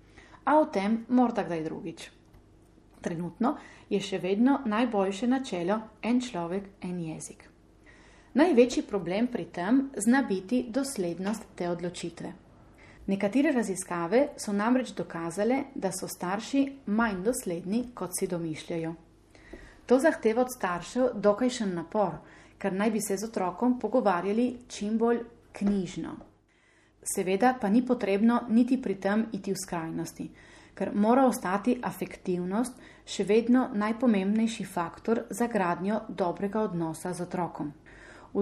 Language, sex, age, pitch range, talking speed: Italian, female, 30-49, 180-240 Hz, 125 wpm